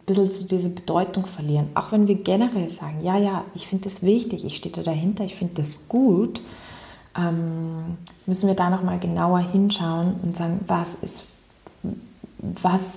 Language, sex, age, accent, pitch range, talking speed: German, female, 30-49, German, 165-200 Hz, 165 wpm